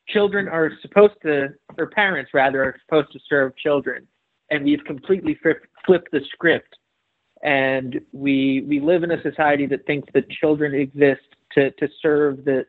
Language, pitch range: English, 130-150 Hz